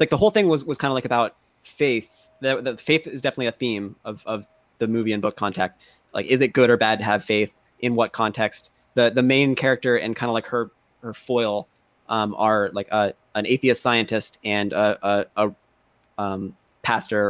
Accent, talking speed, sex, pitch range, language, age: American, 210 wpm, male, 110-130 Hz, English, 20-39